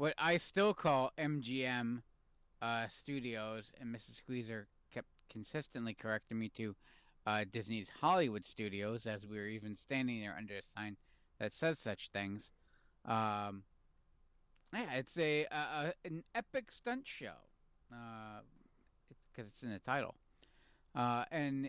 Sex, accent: male, American